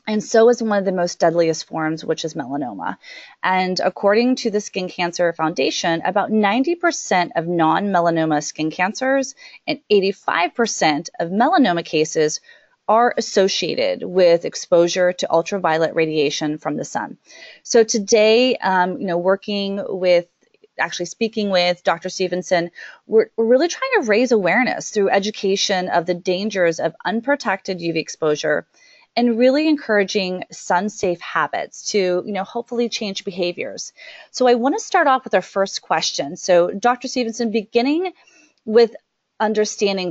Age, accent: 30-49, American